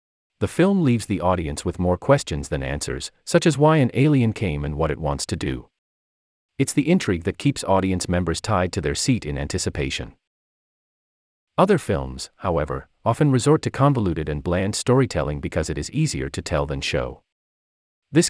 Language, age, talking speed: English, 40-59, 175 wpm